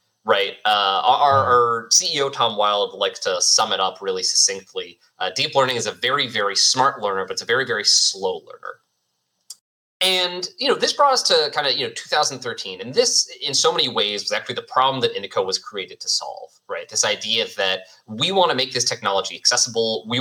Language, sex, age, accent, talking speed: English, male, 20-39, American, 210 wpm